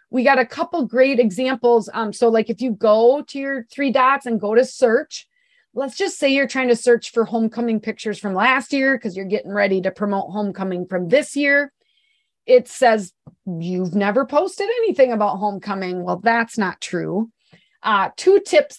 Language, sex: English, female